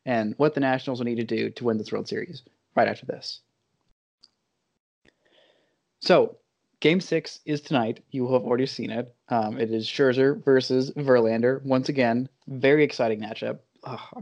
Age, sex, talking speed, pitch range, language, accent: 20-39, male, 165 wpm, 115-140 Hz, English, American